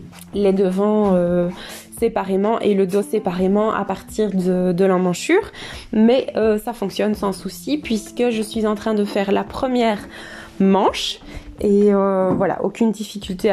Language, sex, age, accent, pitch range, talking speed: French, female, 20-39, French, 190-225 Hz, 150 wpm